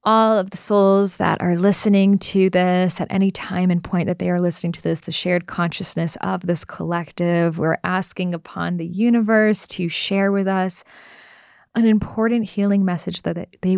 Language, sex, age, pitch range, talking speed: English, female, 20-39, 170-205 Hz, 180 wpm